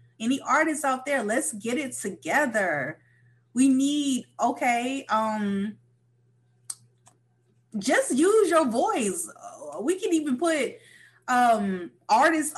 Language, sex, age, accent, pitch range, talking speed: English, female, 20-39, American, 200-335 Hz, 105 wpm